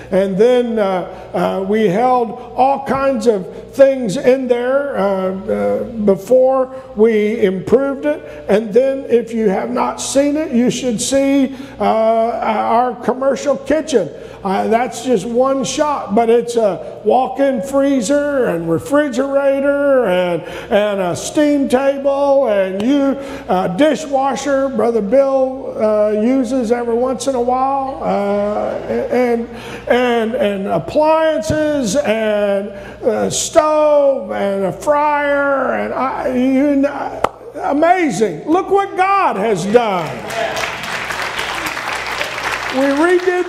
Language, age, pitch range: English, 50-69, 210-270 Hz